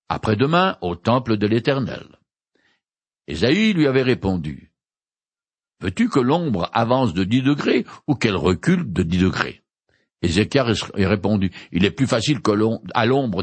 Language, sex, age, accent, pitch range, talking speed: French, male, 60-79, French, 95-145 Hz, 140 wpm